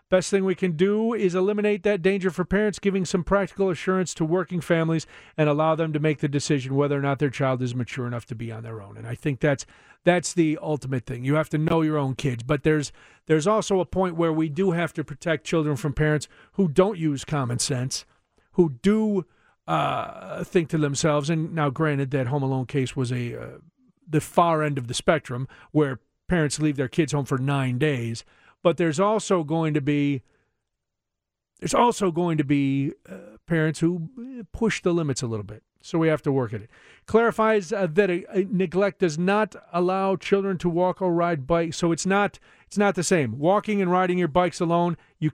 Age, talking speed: 40-59, 210 wpm